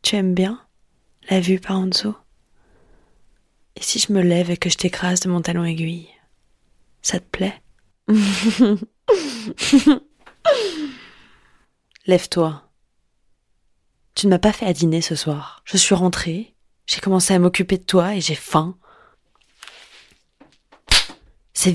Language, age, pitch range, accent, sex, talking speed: French, 20-39, 165-195 Hz, French, female, 130 wpm